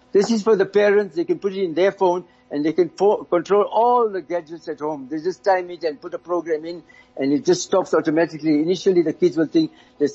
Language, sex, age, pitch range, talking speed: English, male, 60-79, 140-175 Hz, 250 wpm